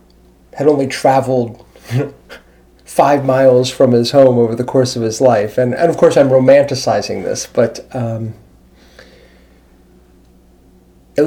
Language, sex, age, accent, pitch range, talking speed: English, male, 40-59, American, 115-145 Hz, 130 wpm